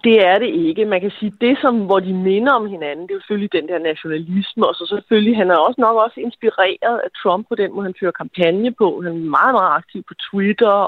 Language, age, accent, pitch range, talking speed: Danish, 30-49, native, 165-210 Hz, 255 wpm